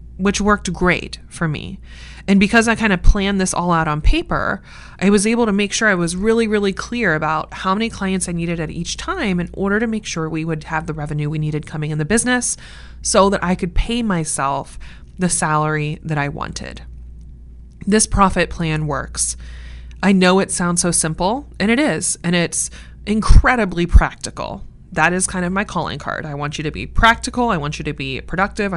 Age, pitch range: 20-39, 150-195 Hz